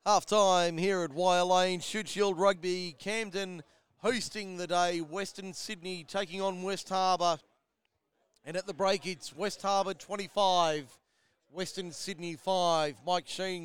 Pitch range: 155-190 Hz